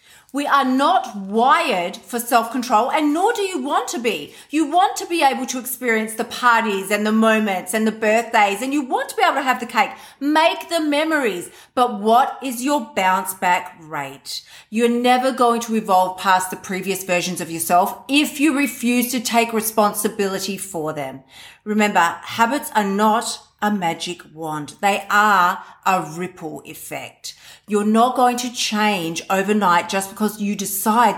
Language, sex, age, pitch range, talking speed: English, female, 40-59, 185-245 Hz, 170 wpm